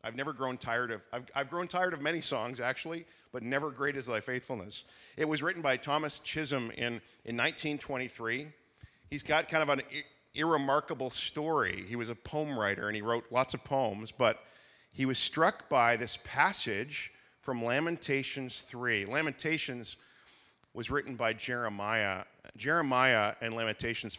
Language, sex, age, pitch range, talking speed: English, male, 40-59, 120-155 Hz, 160 wpm